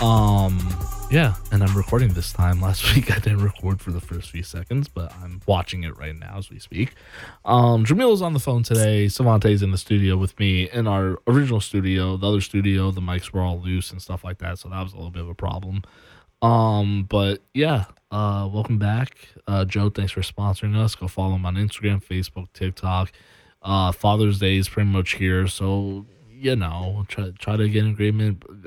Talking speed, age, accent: 205 wpm, 20-39, American